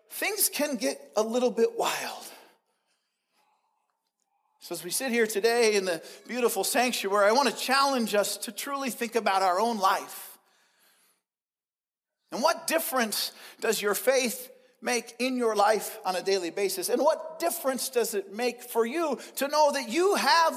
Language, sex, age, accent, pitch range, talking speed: English, male, 40-59, American, 195-270 Hz, 165 wpm